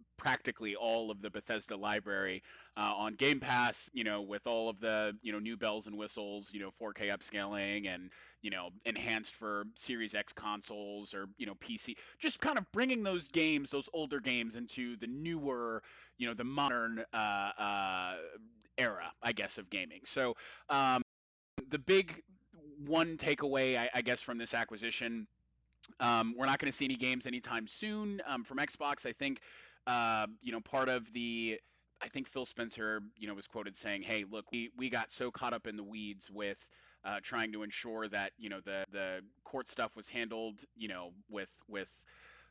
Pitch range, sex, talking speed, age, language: 105-130 Hz, male, 190 wpm, 20-39, English